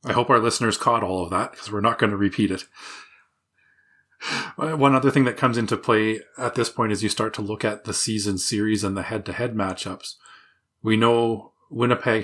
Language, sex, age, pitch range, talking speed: English, male, 30-49, 100-120 Hz, 200 wpm